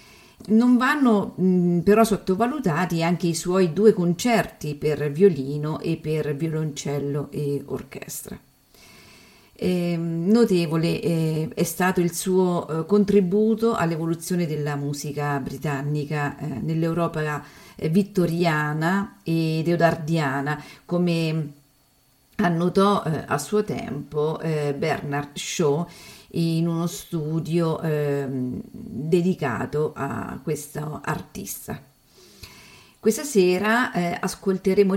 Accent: native